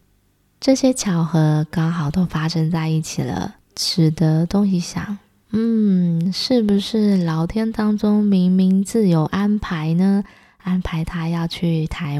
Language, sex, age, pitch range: Chinese, female, 20-39, 160-200 Hz